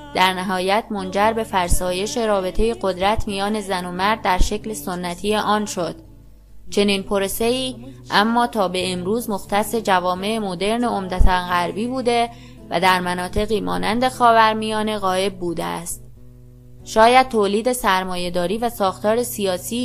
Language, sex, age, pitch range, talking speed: Persian, female, 20-39, 180-220 Hz, 130 wpm